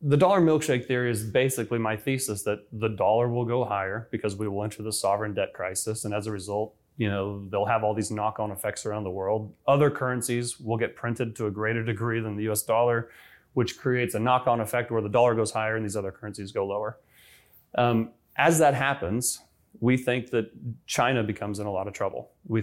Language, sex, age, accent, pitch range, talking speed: English, male, 30-49, American, 105-120 Hz, 215 wpm